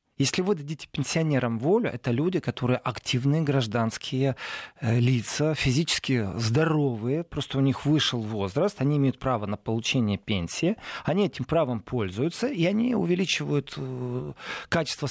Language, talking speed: Russian, 125 wpm